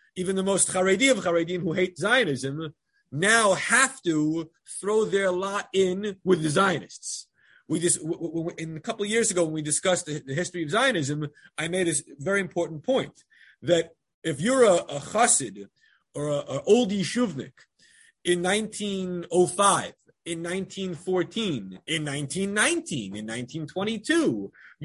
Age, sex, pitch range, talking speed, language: 30-49, male, 165-215 Hz, 150 wpm, English